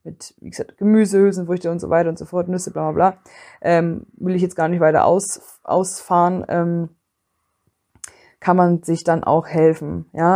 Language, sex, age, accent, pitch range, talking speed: German, female, 20-39, German, 165-200 Hz, 185 wpm